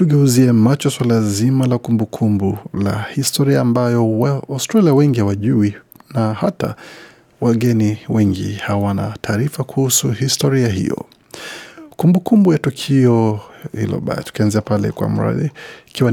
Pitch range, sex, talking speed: 110-135 Hz, male, 120 wpm